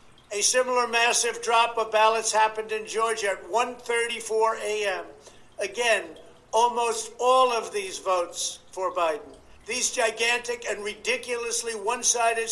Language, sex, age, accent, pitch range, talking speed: English, male, 60-79, American, 205-250 Hz, 120 wpm